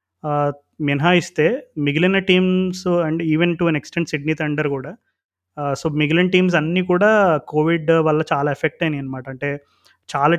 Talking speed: 140 wpm